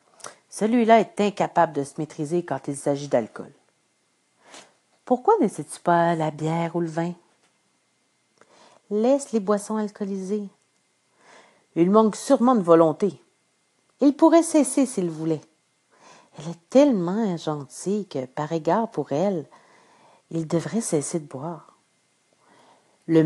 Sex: female